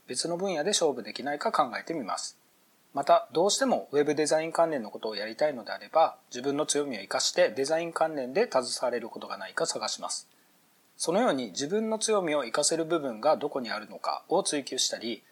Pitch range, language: 145-190 Hz, Japanese